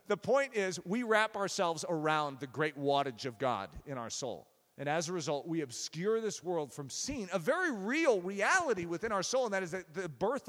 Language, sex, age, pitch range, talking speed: English, male, 40-59, 150-225 Hz, 215 wpm